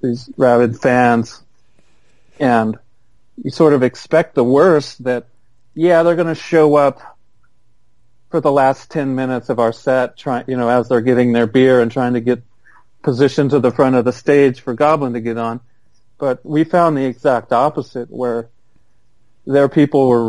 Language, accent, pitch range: English, American, 115-135 Hz